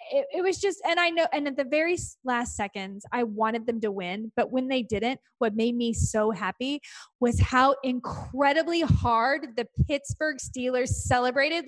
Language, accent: English, American